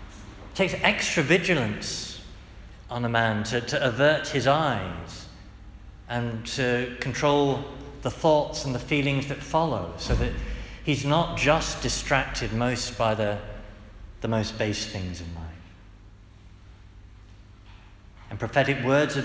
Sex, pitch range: male, 100-155 Hz